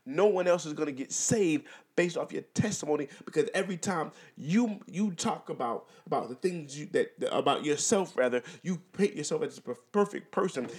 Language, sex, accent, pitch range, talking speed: English, male, American, 150-210 Hz, 195 wpm